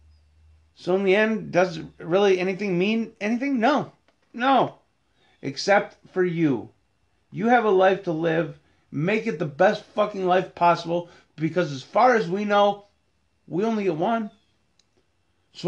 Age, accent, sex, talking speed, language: 30-49, American, male, 145 wpm, English